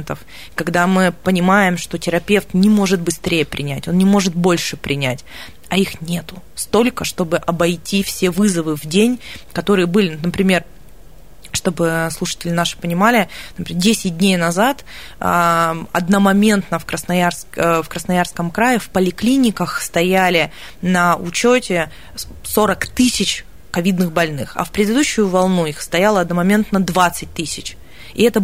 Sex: female